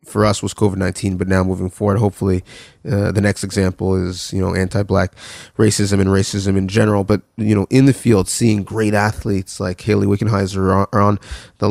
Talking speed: 190 wpm